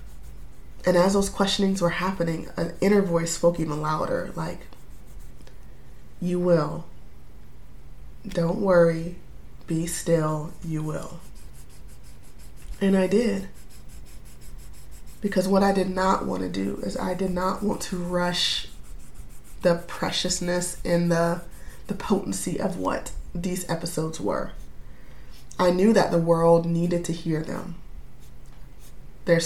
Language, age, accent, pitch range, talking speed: English, 20-39, American, 160-185 Hz, 120 wpm